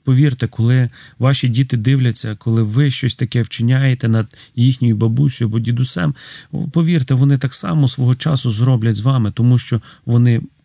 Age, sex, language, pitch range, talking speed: 40-59, male, Ukrainian, 120-145 Hz, 150 wpm